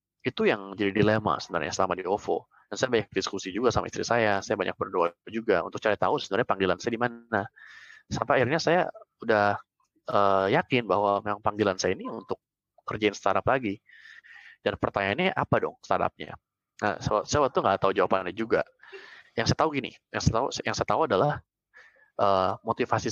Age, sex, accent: 20-39, male, native